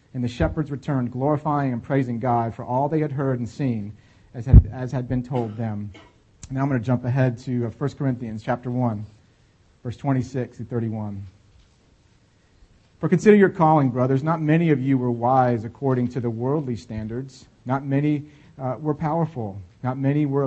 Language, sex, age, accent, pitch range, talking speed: English, male, 40-59, American, 115-145 Hz, 170 wpm